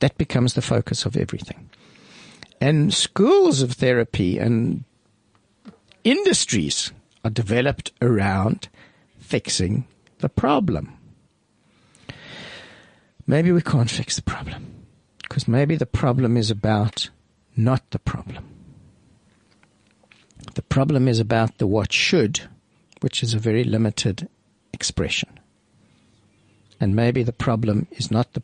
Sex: male